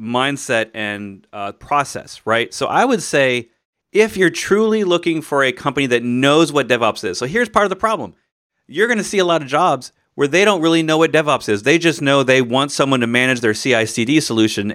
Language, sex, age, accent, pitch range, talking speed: English, male, 40-59, American, 105-140 Hz, 225 wpm